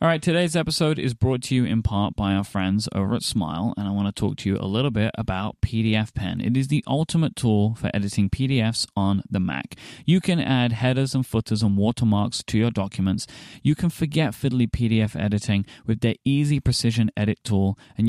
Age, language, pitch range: 20-39, English, 105-135 Hz